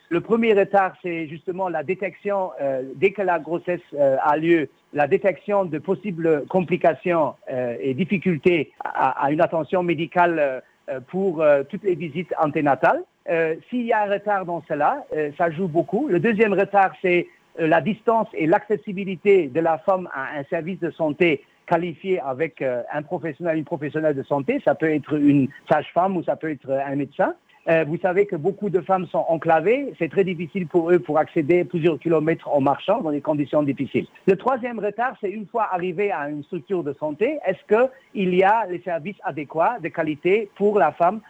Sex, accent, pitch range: male, French, 155-195 Hz